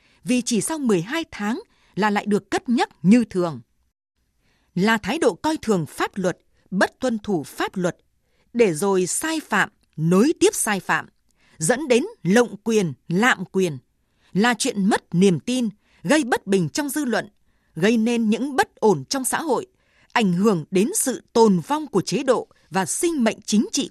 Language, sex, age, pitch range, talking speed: Vietnamese, female, 20-39, 190-265 Hz, 180 wpm